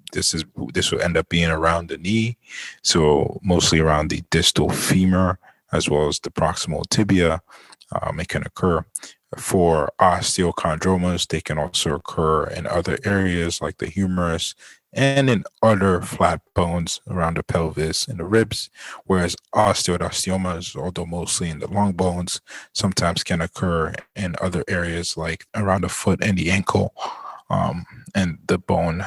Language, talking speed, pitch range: English, 155 wpm, 85-95 Hz